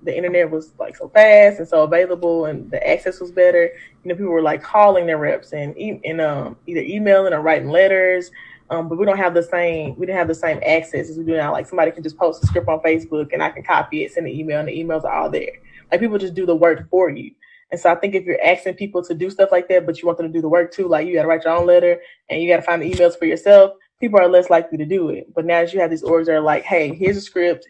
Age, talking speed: 20-39, 300 wpm